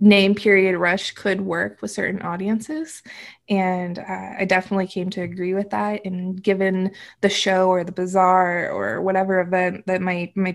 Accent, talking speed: American, 170 wpm